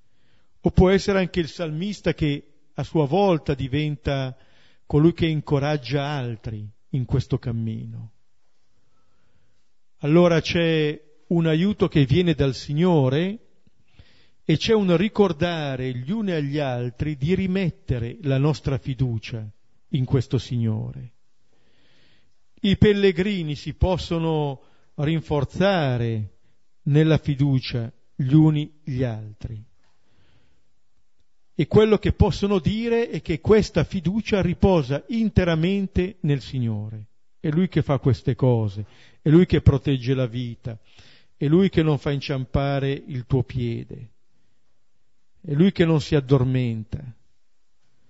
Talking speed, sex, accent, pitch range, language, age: 115 wpm, male, native, 120-170 Hz, Italian, 50-69